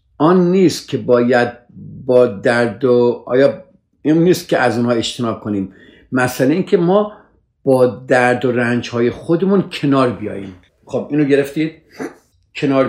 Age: 50-69